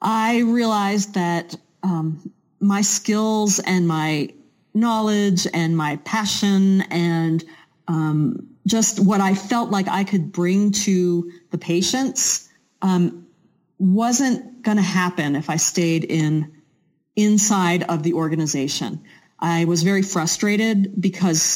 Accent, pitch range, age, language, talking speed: American, 170-210 Hz, 40-59, English, 120 wpm